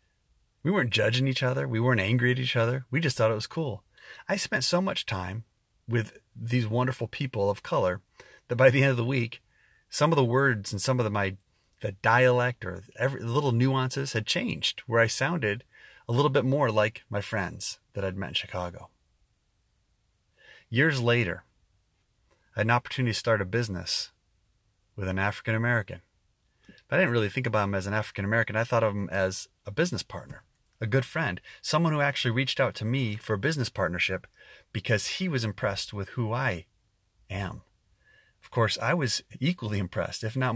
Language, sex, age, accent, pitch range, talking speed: English, male, 30-49, American, 100-125 Hz, 190 wpm